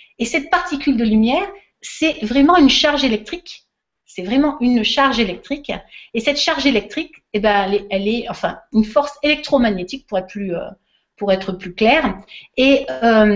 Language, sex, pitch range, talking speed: French, female, 205-280 Hz, 155 wpm